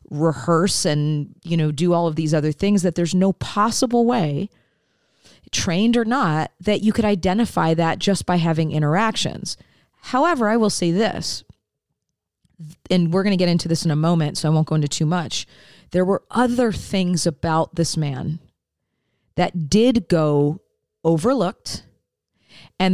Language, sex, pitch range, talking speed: English, female, 150-190 Hz, 160 wpm